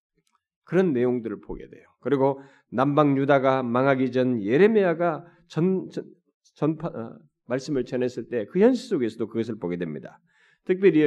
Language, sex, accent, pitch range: Korean, male, native, 125-195 Hz